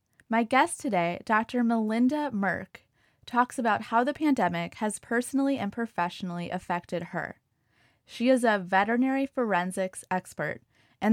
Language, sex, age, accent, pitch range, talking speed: English, female, 20-39, American, 180-245 Hz, 130 wpm